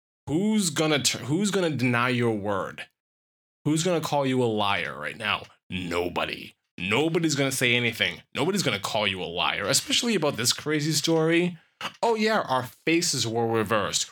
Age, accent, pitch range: 20-39, American, 105-145 Hz